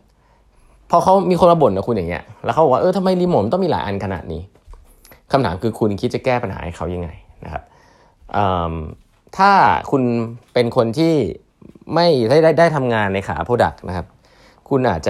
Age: 20-39